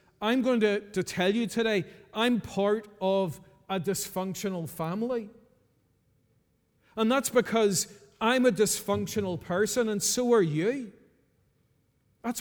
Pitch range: 195-225 Hz